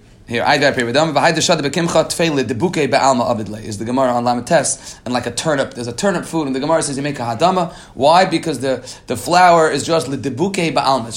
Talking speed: 170 wpm